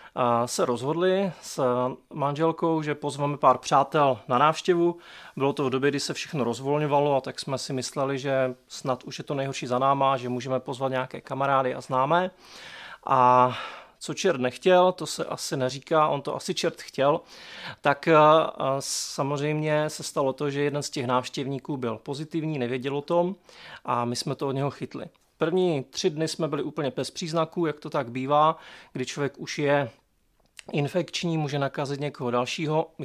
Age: 30-49